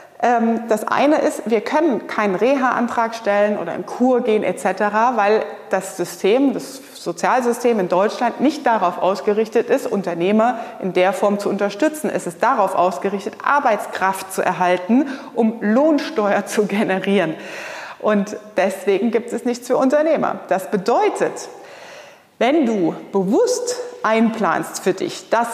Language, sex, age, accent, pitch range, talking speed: German, female, 30-49, German, 190-245 Hz, 135 wpm